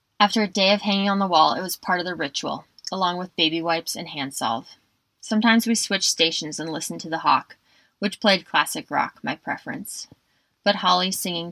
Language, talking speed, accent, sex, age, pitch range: English, 205 wpm, American, female, 20-39, 160-200 Hz